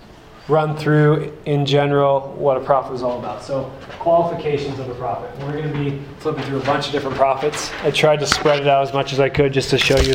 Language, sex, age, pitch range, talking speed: English, male, 20-39, 125-150 Hz, 240 wpm